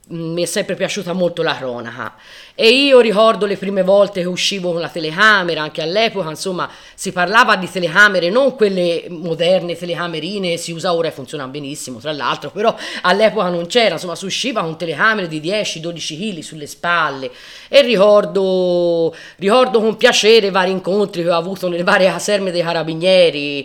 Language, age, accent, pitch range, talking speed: Italian, 30-49, native, 160-205 Hz, 170 wpm